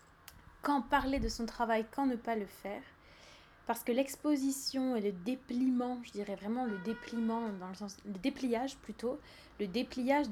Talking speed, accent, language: 170 wpm, French, French